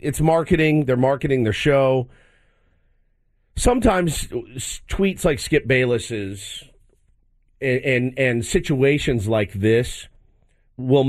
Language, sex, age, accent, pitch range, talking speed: English, male, 50-69, American, 110-155 Hz, 95 wpm